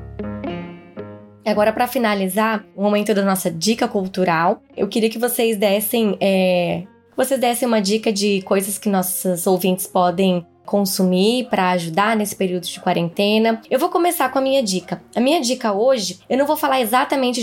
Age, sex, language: 10-29, female, Portuguese